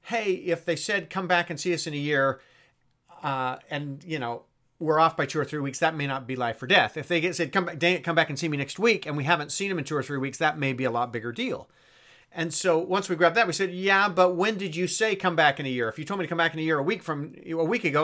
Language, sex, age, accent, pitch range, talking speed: English, male, 40-59, American, 140-175 Hz, 320 wpm